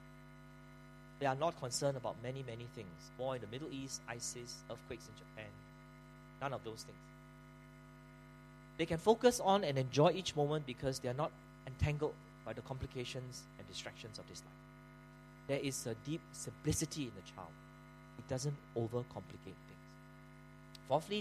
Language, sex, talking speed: English, male, 155 wpm